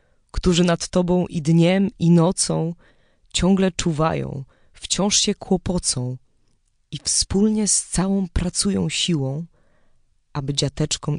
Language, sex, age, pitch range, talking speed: Polish, female, 20-39, 125-165 Hz, 105 wpm